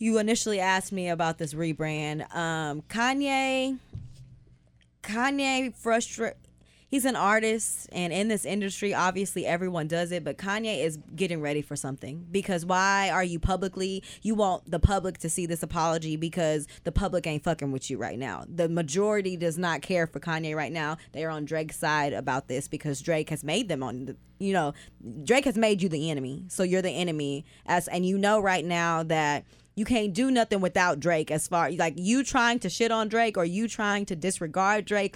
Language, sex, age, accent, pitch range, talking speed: English, female, 20-39, American, 160-200 Hz, 190 wpm